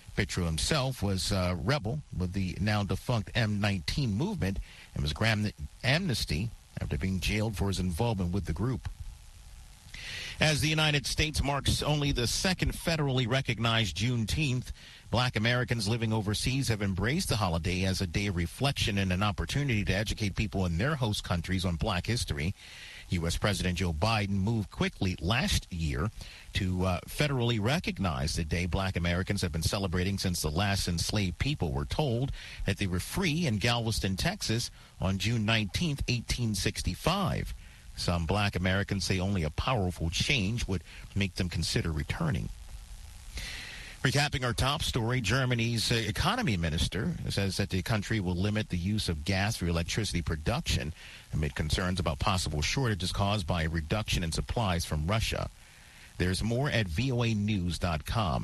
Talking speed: 150 wpm